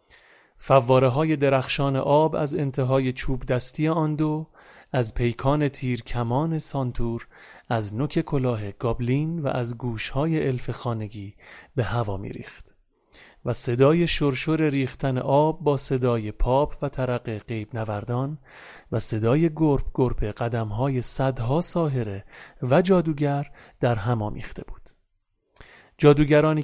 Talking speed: 115 wpm